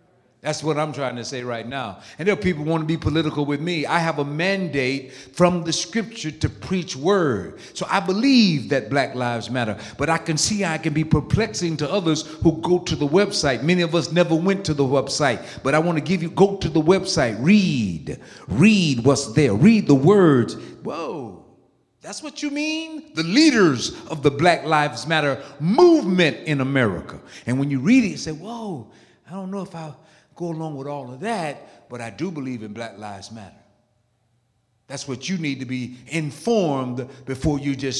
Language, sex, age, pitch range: English, male, 50-69, 130-170 Hz